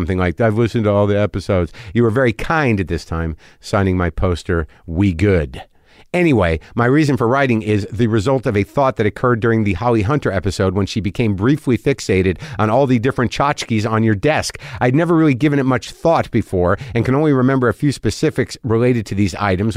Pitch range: 105-140 Hz